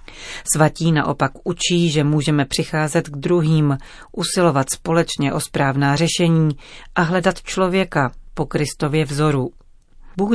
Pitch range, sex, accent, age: 140-165 Hz, female, native, 40-59